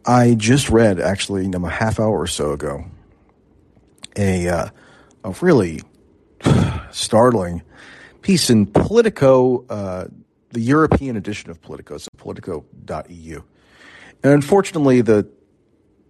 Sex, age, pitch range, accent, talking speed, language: male, 40-59, 95-120 Hz, American, 110 wpm, English